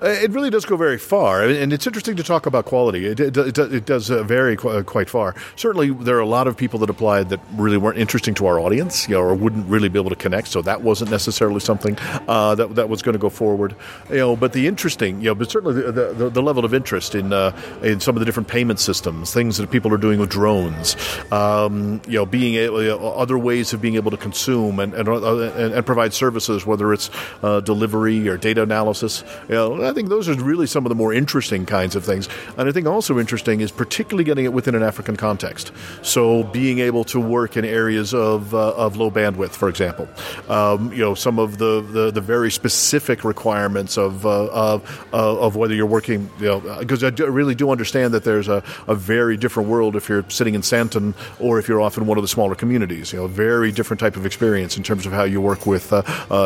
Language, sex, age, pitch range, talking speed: English, male, 50-69, 105-120 Hz, 240 wpm